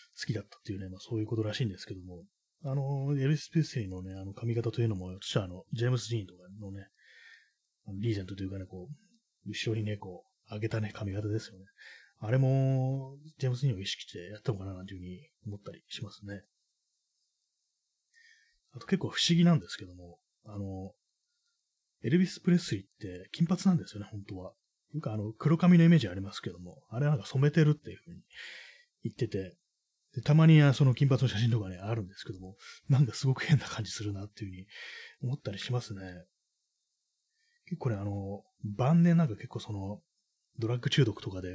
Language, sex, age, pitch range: Japanese, male, 30-49, 100-145 Hz